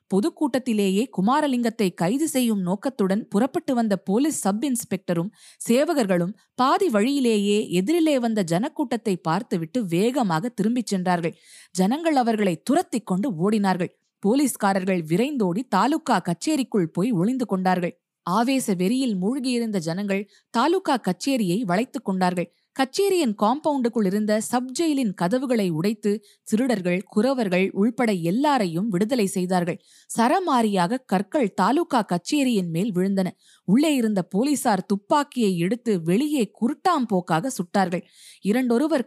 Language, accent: Tamil, native